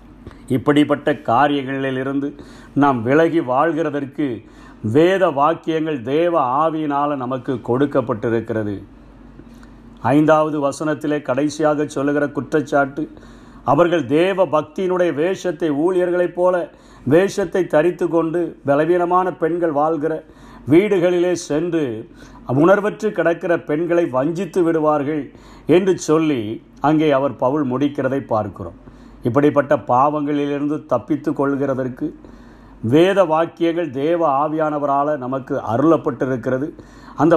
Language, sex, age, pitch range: Tamil, male, 50-69, 140-170 Hz